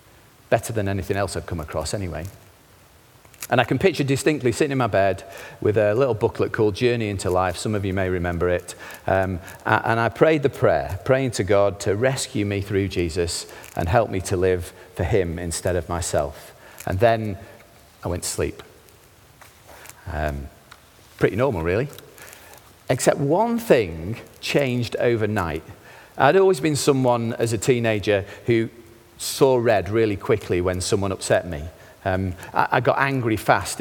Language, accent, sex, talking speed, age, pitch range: English, British, male, 165 wpm, 40-59, 95-120 Hz